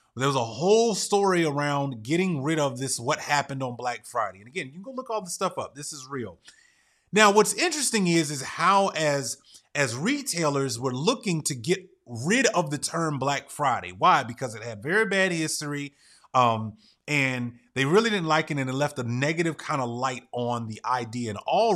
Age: 30-49